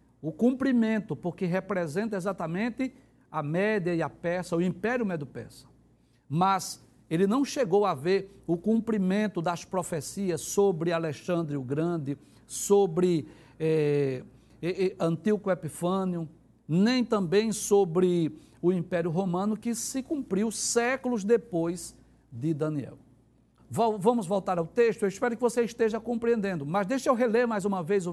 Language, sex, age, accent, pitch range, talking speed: Portuguese, male, 60-79, Brazilian, 170-220 Hz, 135 wpm